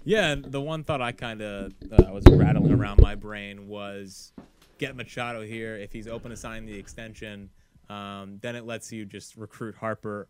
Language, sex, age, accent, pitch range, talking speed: English, male, 20-39, American, 110-140 Hz, 185 wpm